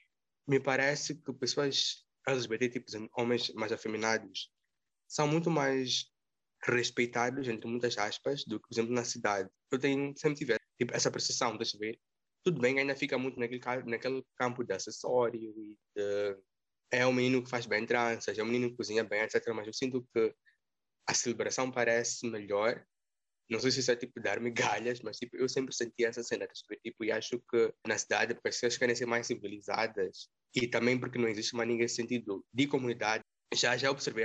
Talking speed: 190 wpm